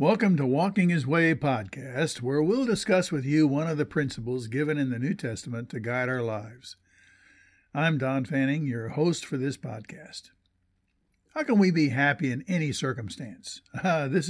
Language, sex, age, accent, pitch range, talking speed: English, male, 60-79, American, 120-170 Hz, 175 wpm